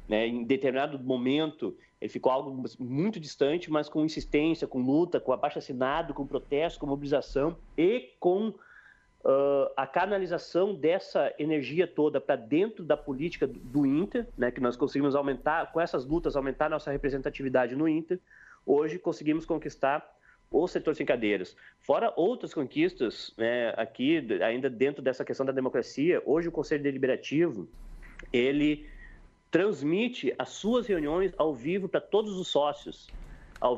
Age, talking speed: 30-49, 145 wpm